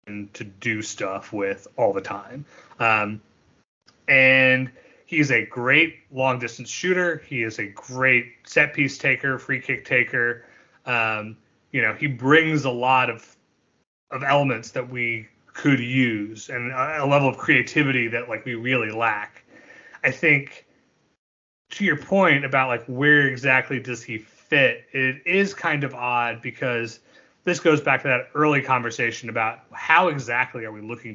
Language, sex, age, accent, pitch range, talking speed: English, male, 30-49, American, 120-145 Hz, 155 wpm